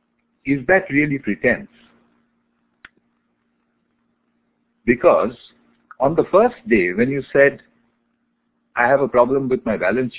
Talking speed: 110 wpm